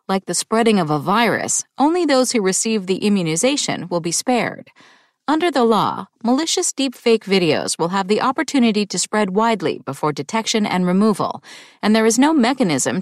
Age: 40-59